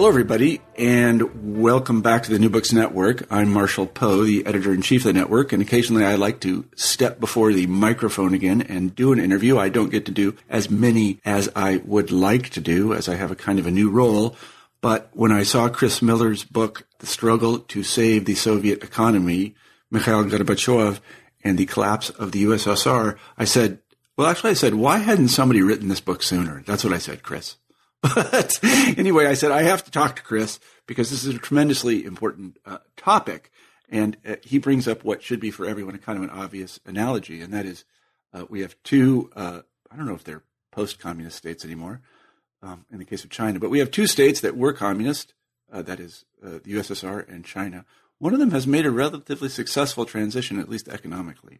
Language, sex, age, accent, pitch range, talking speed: English, male, 50-69, American, 95-120 Hz, 205 wpm